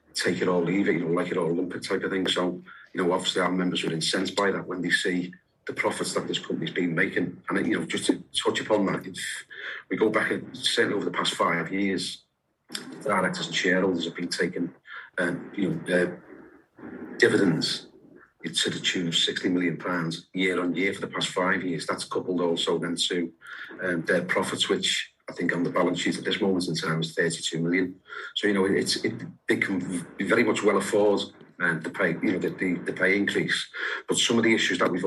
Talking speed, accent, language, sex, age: 230 wpm, British, English, male, 40-59